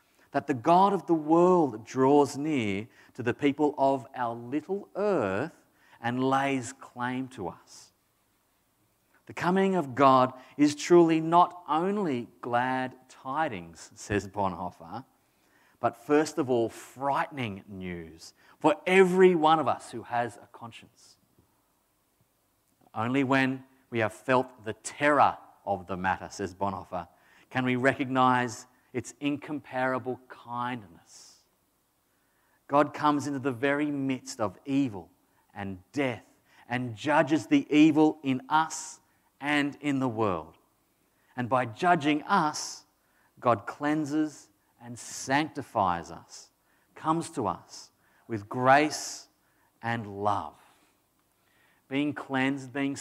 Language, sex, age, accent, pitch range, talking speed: English, male, 40-59, Australian, 115-150 Hz, 120 wpm